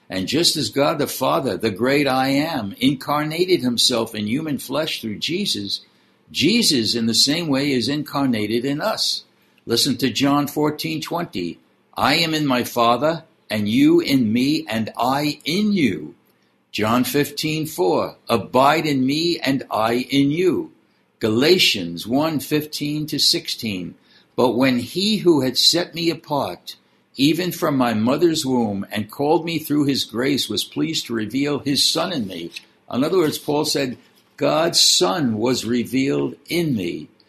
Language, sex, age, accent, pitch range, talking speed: English, male, 60-79, American, 120-160 Hz, 155 wpm